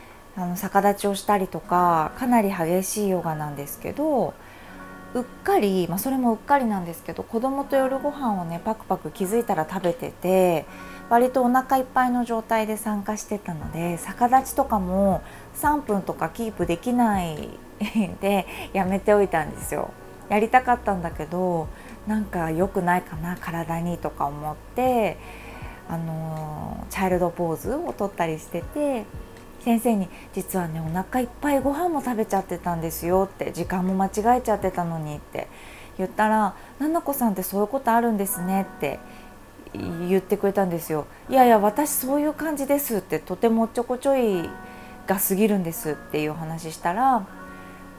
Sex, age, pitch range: female, 20-39, 170-235 Hz